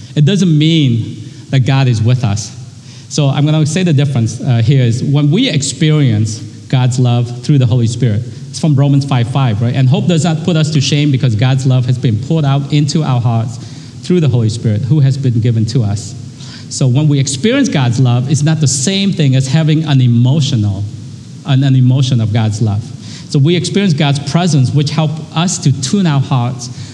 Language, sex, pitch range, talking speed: English, male, 125-150 Hz, 205 wpm